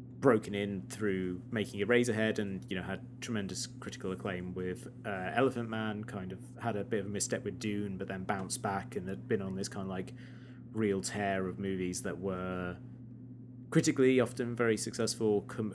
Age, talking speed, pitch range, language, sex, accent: 20-39, 190 wpm, 95-125 Hz, English, male, British